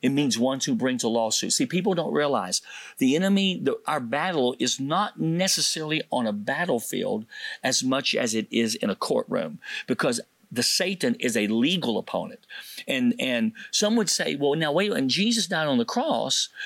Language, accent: English, American